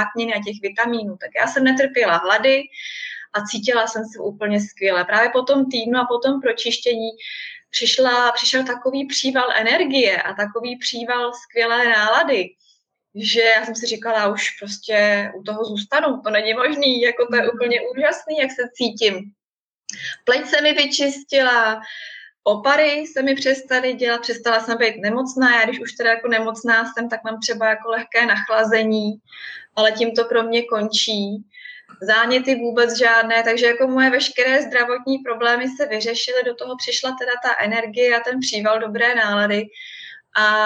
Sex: female